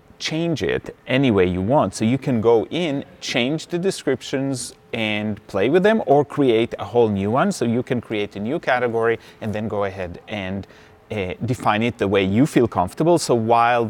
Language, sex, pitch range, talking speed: English, male, 105-140 Hz, 200 wpm